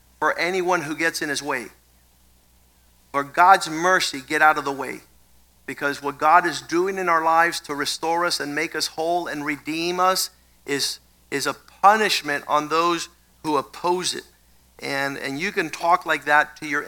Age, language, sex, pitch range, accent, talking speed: 50-69, English, male, 135-170 Hz, American, 180 wpm